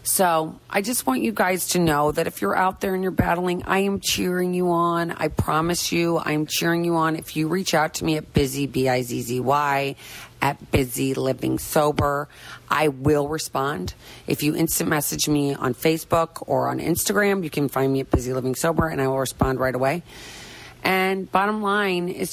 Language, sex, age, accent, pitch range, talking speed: English, female, 40-59, American, 135-190 Hz, 195 wpm